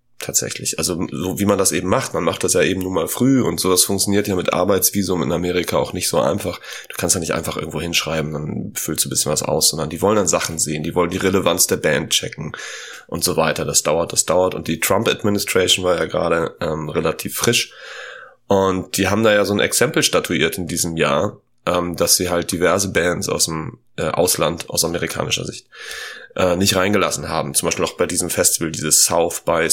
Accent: German